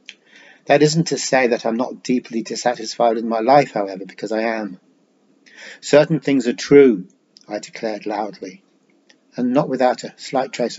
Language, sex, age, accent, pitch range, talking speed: English, male, 40-59, British, 115-135 Hz, 160 wpm